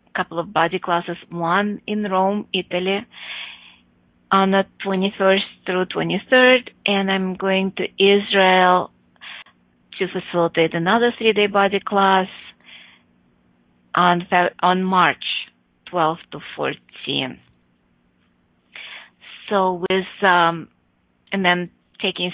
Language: English